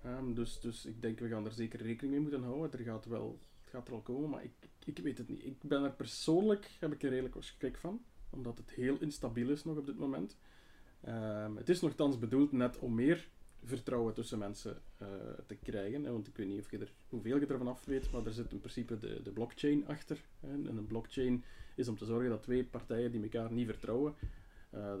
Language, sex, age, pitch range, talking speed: Dutch, male, 30-49, 110-135 Hz, 235 wpm